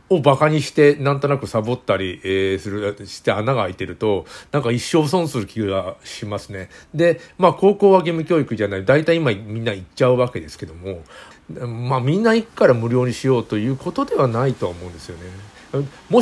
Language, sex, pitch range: Japanese, male, 105-165 Hz